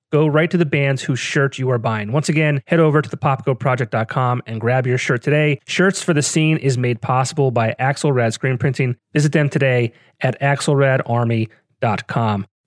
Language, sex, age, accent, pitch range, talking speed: English, male, 30-49, American, 125-150 Hz, 180 wpm